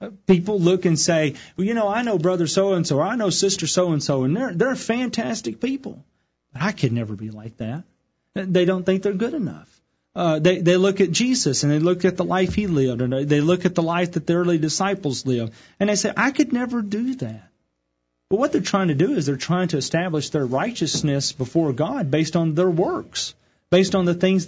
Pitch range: 135-185 Hz